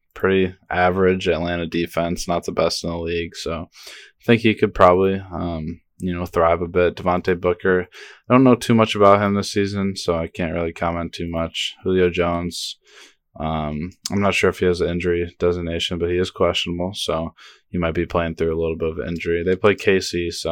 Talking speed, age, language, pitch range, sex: 210 wpm, 20-39, English, 85-95 Hz, male